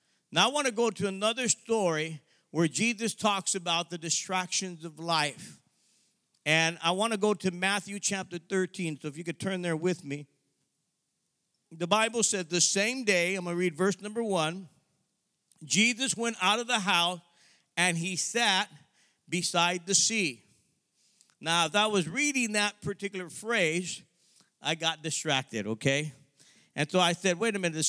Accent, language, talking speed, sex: American, English, 170 wpm, male